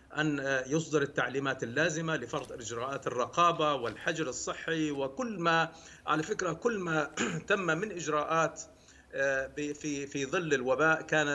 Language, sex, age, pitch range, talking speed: Arabic, male, 50-69, 135-165 Hz, 120 wpm